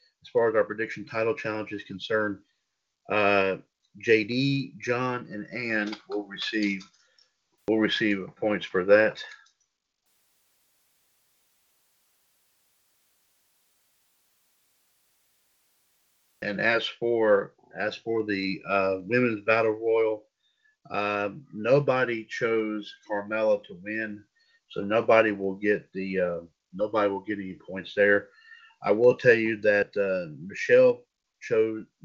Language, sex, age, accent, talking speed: English, male, 50-69, American, 105 wpm